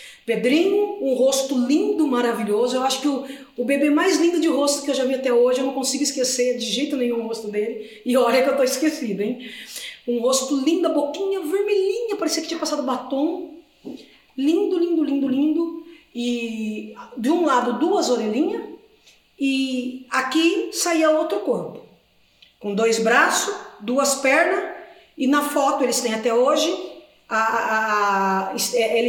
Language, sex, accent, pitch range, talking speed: Portuguese, female, Brazilian, 230-320 Hz, 165 wpm